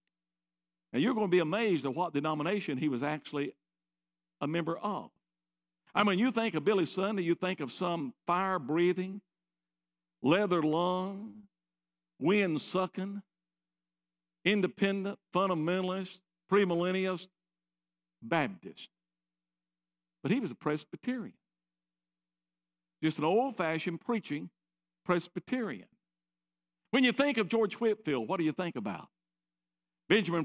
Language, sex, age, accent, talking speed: English, male, 60-79, American, 110 wpm